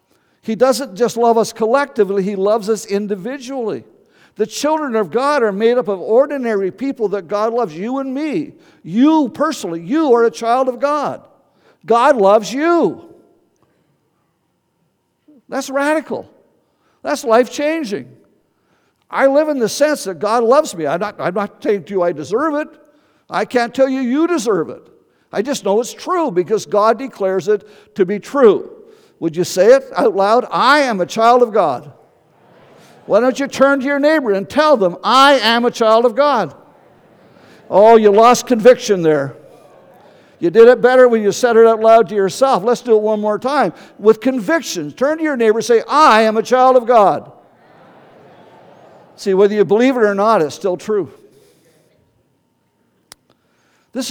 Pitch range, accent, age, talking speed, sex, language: 210-285 Hz, American, 60-79, 170 wpm, male, English